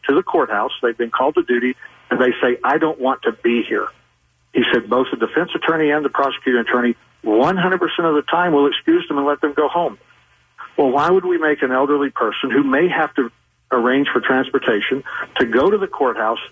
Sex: male